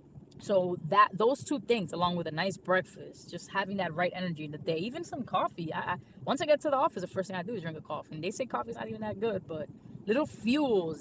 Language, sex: English, female